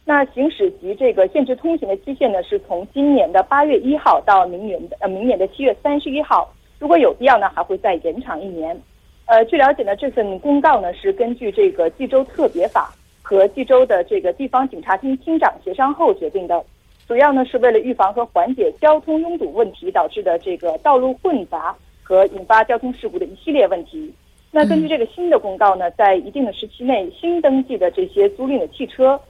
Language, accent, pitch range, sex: Korean, Chinese, 195-315 Hz, female